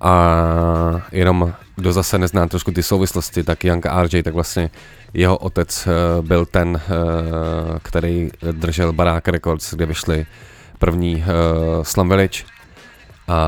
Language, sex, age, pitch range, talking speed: Czech, male, 30-49, 80-90 Hz, 135 wpm